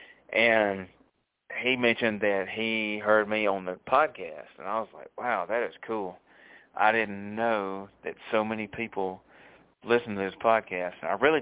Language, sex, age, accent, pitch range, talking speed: English, male, 30-49, American, 95-110 Hz, 170 wpm